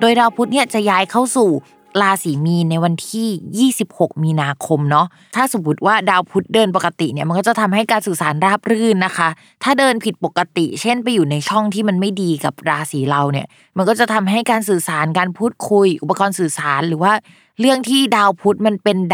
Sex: female